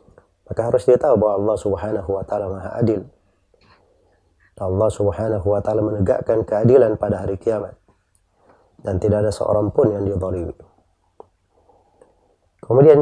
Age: 30-49